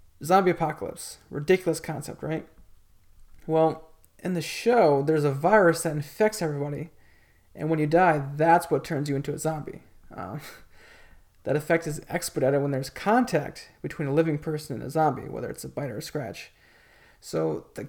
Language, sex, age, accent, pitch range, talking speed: English, male, 20-39, American, 145-175 Hz, 170 wpm